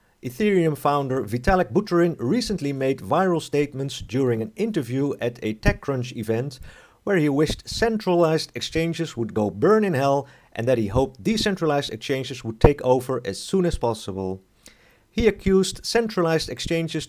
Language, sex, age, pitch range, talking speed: English, male, 50-69, 120-170 Hz, 150 wpm